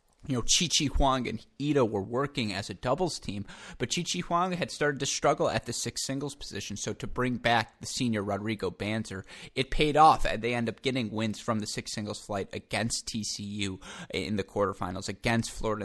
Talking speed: 200 wpm